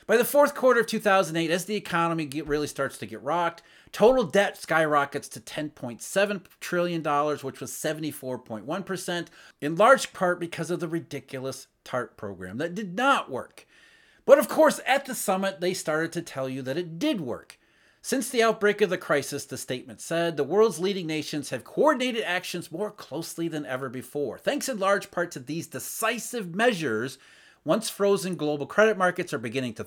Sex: male